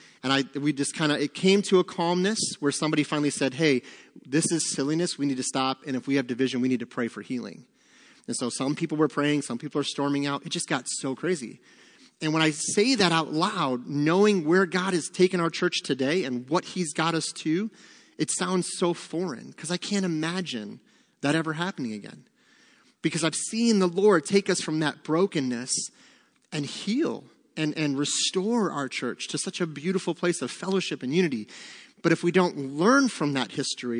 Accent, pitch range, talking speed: American, 140-190 Hz, 205 wpm